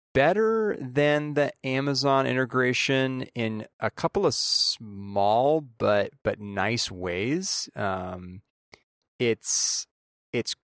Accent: American